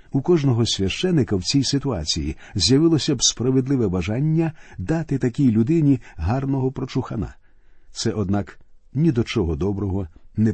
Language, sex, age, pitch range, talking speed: Ukrainian, male, 50-69, 100-140 Hz, 125 wpm